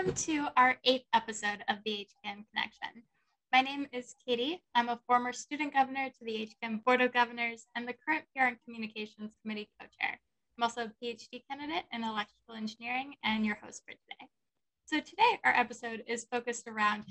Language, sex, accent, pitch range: English, female, American, 220-265 Hz